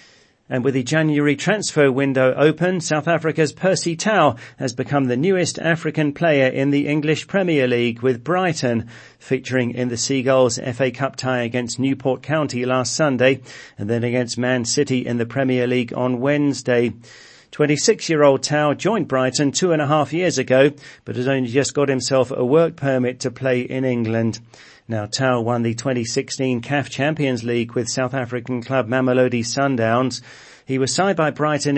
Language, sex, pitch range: English, male, 120-145 Hz